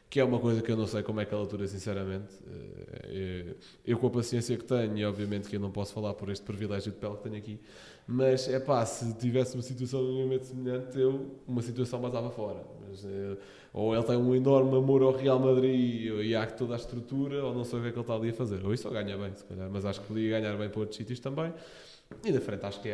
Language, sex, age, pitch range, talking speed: Portuguese, male, 20-39, 105-125 Hz, 265 wpm